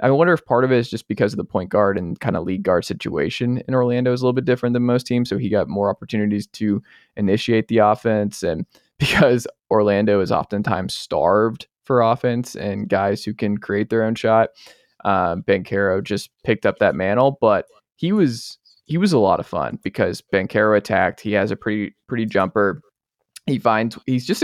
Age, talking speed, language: 20-39, 210 wpm, English